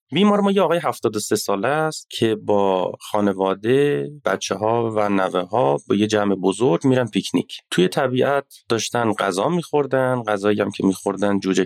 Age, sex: 30-49, male